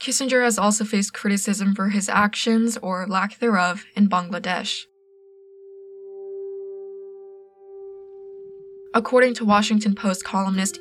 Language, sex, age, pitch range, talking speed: English, female, 20-39, 190-230 Hz, 100 wpm